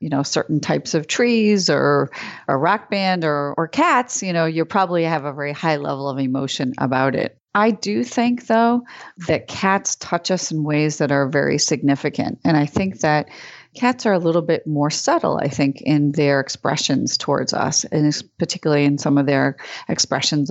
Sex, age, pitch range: female, 30-49, 150-195 Hz